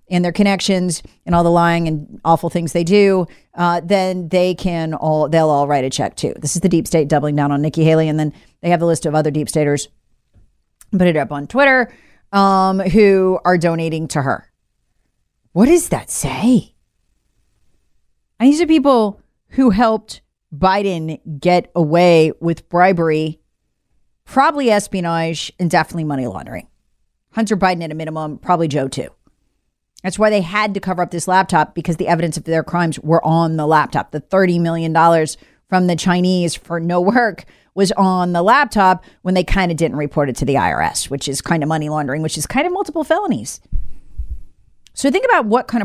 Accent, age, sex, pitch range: American, 40-59, female, 160-195 Hz